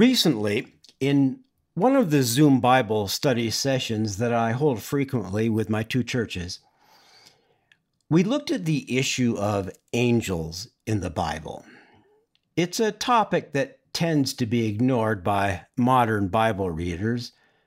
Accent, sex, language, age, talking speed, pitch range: American, male, English, 50-69, 130 wpm, 105-145 Hz